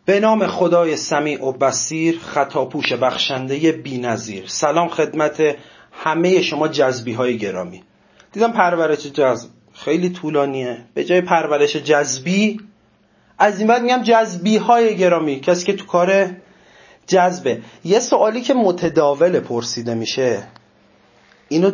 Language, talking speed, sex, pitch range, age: Persian, 125 wpm, male, 150-210 Hz, 30-49